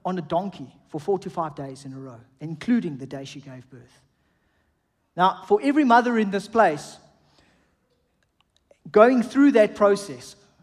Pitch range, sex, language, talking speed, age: 150-215 Hz, male, English, 160 wpm, 40-59